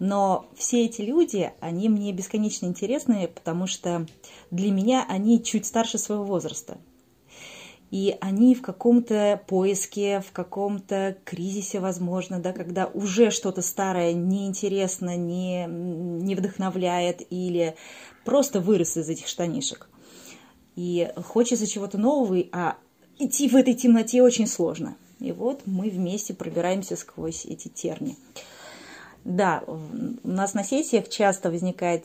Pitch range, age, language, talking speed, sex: 180-225 Hz, 30-49, Russian, 125 wpm, female